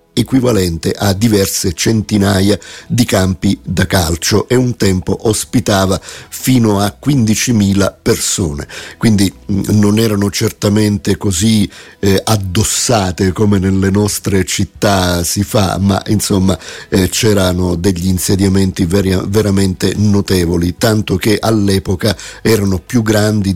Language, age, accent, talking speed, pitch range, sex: Italian, 50-69, native, 105 wpm, 95-105 Hz, male